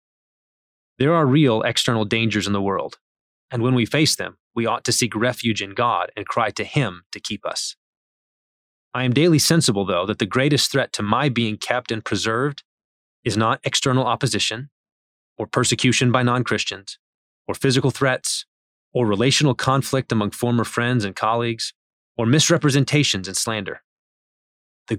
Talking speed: 160 wpm